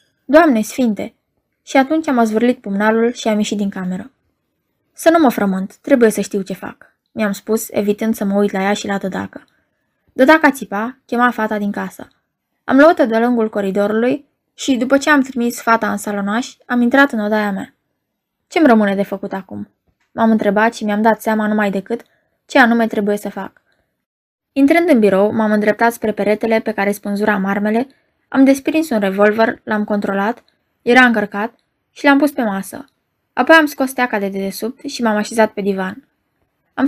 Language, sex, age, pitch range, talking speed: Romanian, female, 20-39, 205-260 Hz, 180 wpm